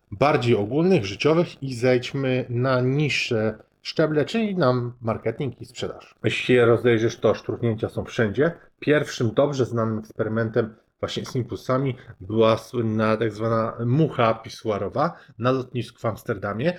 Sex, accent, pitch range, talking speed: male, native, 115-140 Hz, 135 wpm